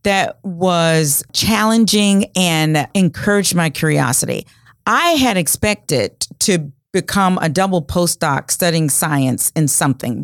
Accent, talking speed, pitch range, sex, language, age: American, 110 wpm, 160-210 Hz, female, English, 40-59